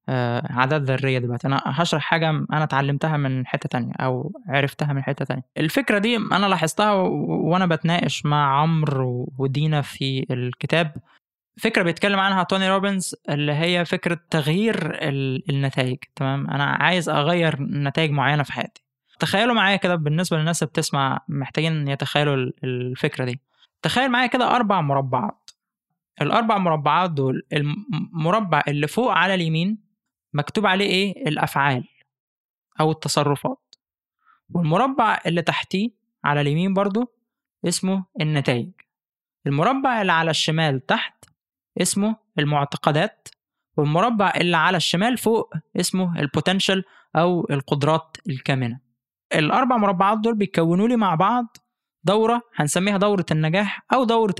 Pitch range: 145-195 Hz